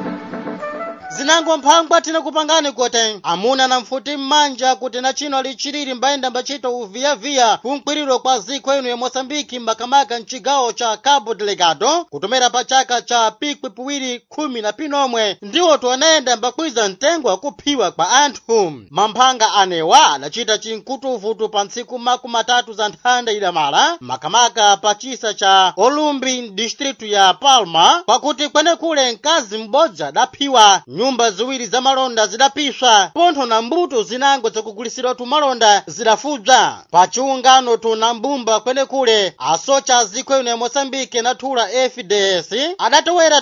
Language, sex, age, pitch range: Portuguese, male, 30-49, 230-285 Hz